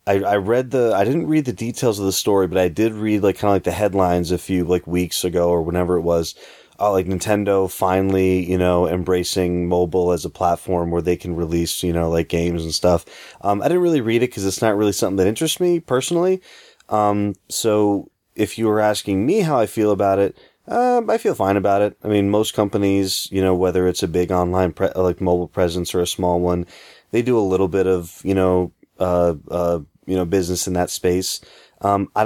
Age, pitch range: 20-39, 90-105 Hz